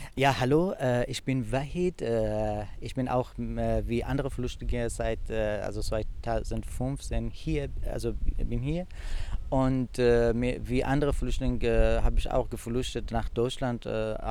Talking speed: 145 wpm